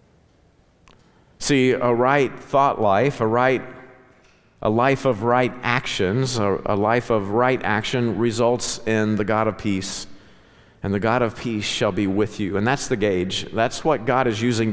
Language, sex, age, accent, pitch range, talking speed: English, male, 50-69, American, 110-140 Hz, 170 wpm